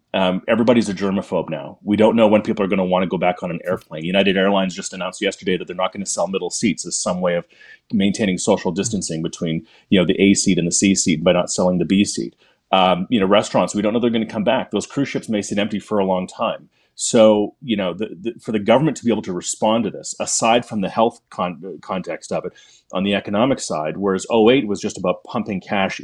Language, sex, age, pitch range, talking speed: English, male, 30-49, 95-110 Hz, 240 wpm